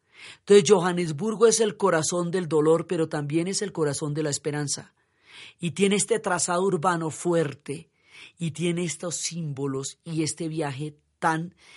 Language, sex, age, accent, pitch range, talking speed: Spanish, female, 40-59, Colombian, 155-190 Hz, 150 wpm